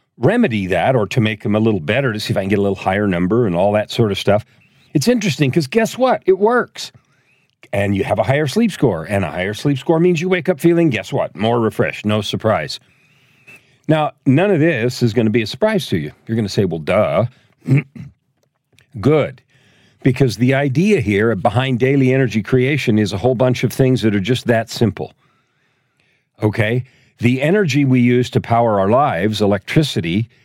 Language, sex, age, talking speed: English, male, 50-69, 205 wpm